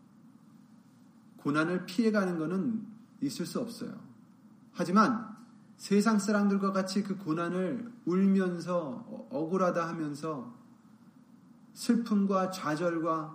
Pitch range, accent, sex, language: 180-230 Hz, native, male, Korean